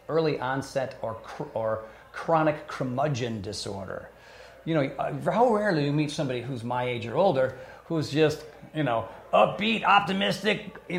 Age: 40-59